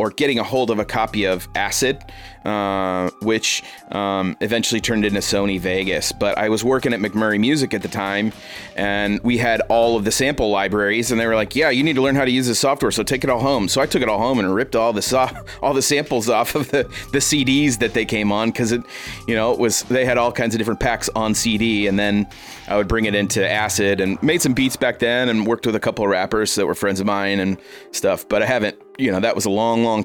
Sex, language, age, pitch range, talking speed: male, English, 30-49, 100-120 Hz, 260 wpm